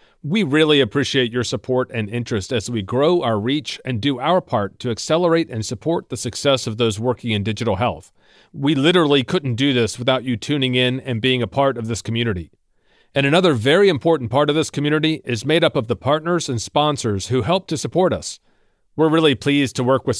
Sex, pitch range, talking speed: male, 115-155 Hz, 210 wpm